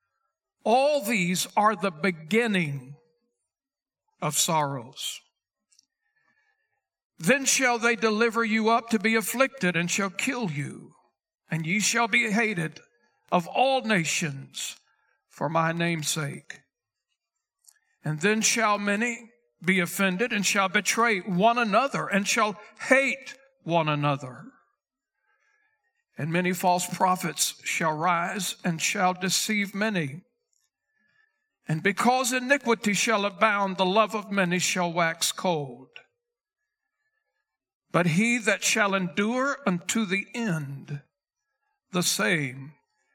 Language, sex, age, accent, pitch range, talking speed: English, male, 60-79, American, 180-250 Hz, 110 wpm